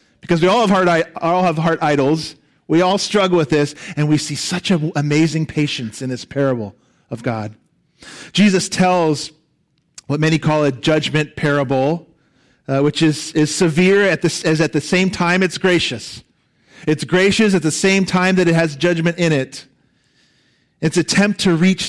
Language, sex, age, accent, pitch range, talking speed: English, male, 40-59, American, 150-185 Hz, 180 wpm